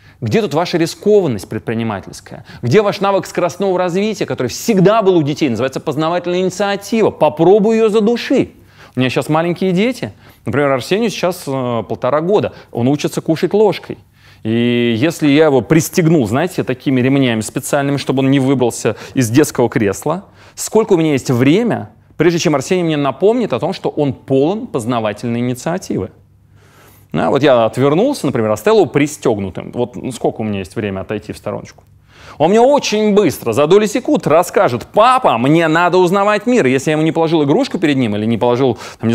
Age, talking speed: 30-49, 165 wpm